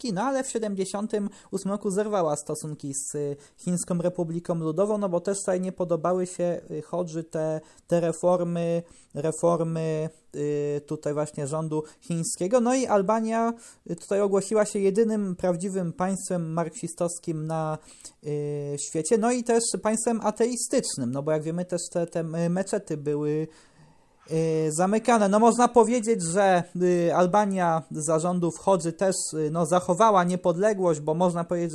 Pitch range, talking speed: 160-200 Hz, 130 wpm